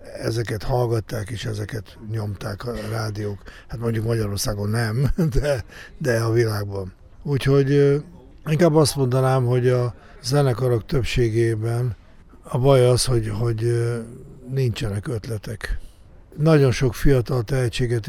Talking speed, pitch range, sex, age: 115 wpm, 110-130 Hz, male, 60-79